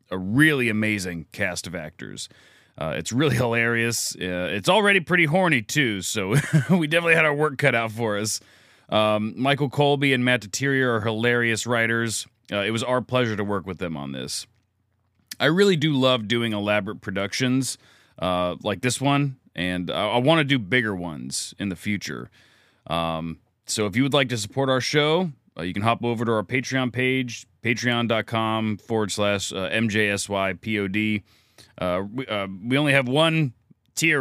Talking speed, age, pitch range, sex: 175 wpm, 30-49, 100-135 Hz, male